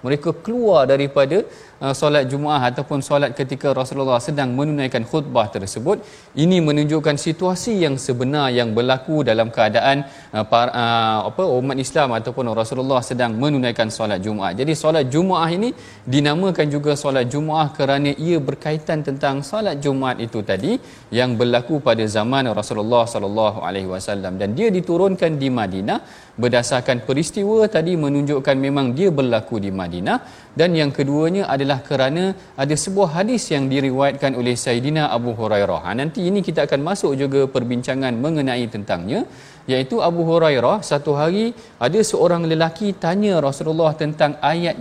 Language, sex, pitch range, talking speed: Malayalam, male, 125-160 Hz, 145 wpm